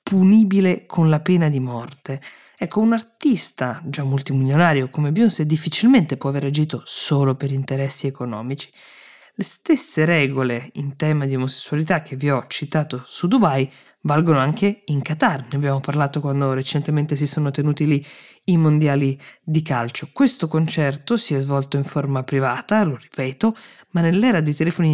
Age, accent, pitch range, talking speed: 20-39, native, 135-165 Hz, 155 wpm